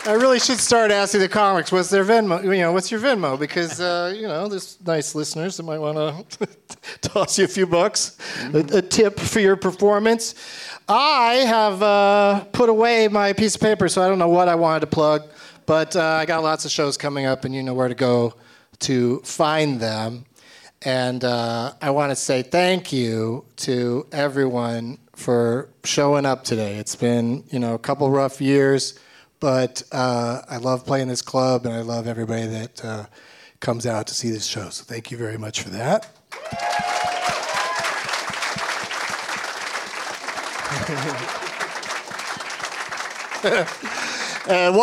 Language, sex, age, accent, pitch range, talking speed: English, male, 40-59, American, 130-215 Hz, 165 wpm